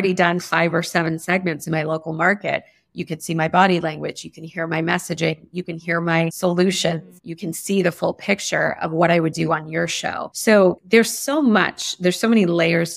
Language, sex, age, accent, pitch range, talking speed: English, female, 30-49, American, 165-185 Hz, 220 wpm